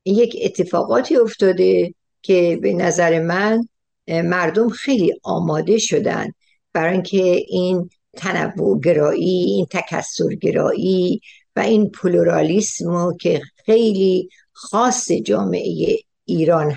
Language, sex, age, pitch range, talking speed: Persian, female, 60-79, 180-230 Hz, 85 wpm